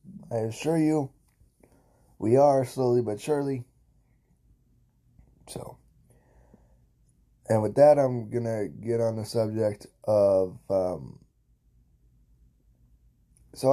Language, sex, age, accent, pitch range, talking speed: English, male, 10-29, American, 100-120 Hz, 90 wpm